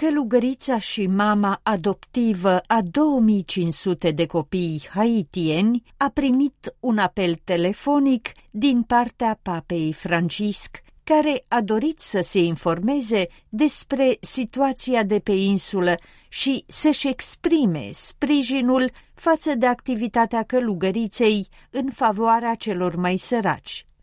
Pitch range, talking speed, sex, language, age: 190-260 Hz, 105 wpm, female, Romanian, 50-69